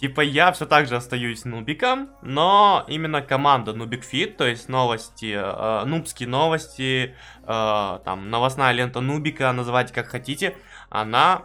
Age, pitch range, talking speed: 20-39, 120-155 Hz, 135 wpm